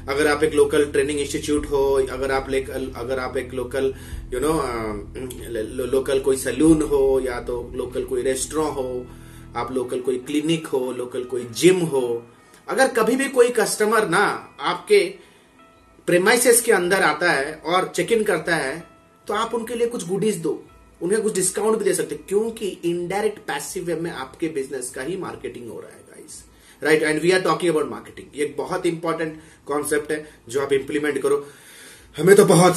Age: 30-49